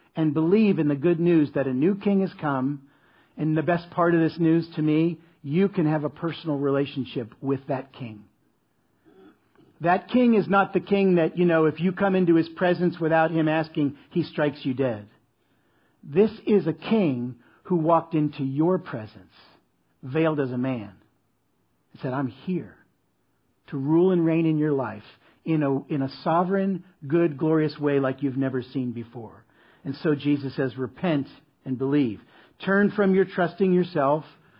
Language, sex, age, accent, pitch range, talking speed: English, male, 50-69, American, 140-180 Hz, 175 wpm